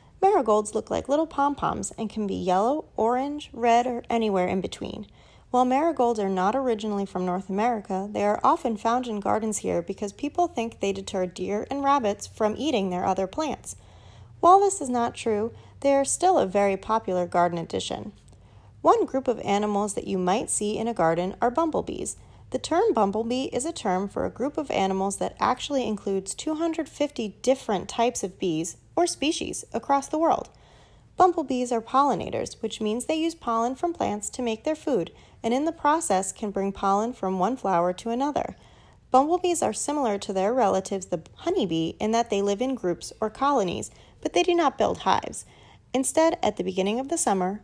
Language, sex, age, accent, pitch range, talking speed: English, female, 30-49, American, 200-280 Hz, 185 wpm